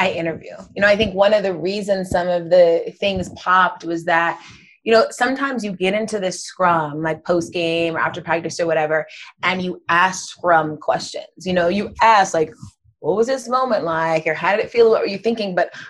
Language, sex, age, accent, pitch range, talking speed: English, female, 30-49, American, 165-195 Hz, 215 wpm